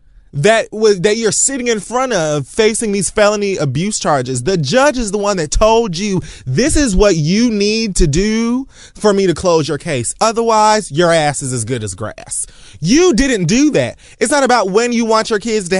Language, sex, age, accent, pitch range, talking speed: English, male, 20-39, American, 170-240 Hz, 210 wpm